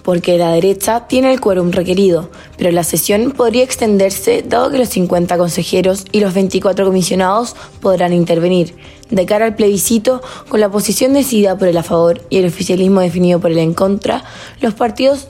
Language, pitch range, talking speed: Spanish, 175-230 Hz, 175 wpm